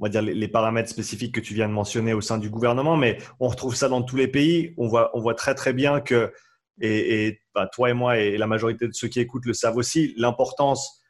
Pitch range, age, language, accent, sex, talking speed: 115-145 Hz, 30-49, French, French, male, 260 wpm